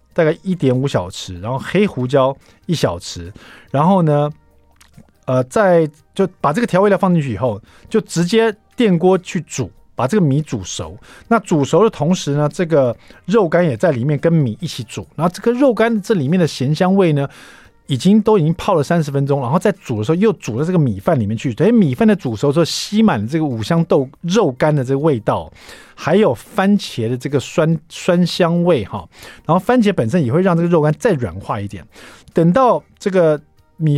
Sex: male